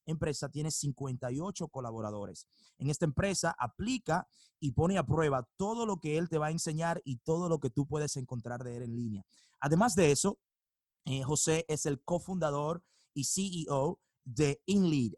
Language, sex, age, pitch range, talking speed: Spanish, male, 30-49, 120-155 Hz, 170 wpm